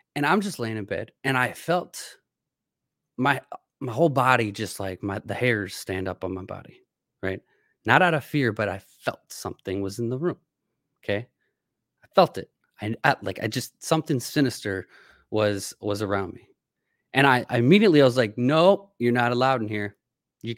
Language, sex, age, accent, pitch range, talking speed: English, male, 20-39, American, 110-135 Hz, 190 wpm